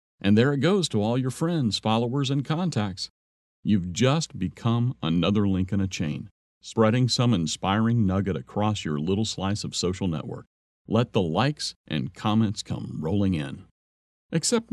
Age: 50-69